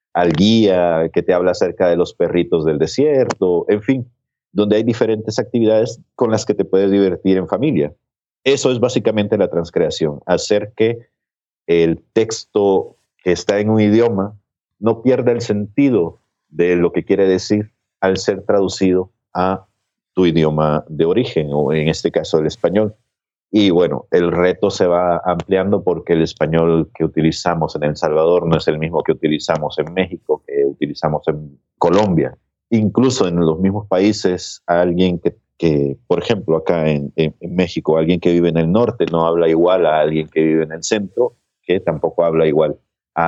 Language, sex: Spanish, male